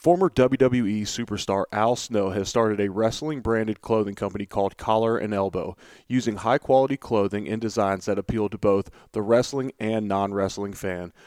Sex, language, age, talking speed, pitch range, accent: male, English, 30-49, 150 wpm, 100-120 Hz, American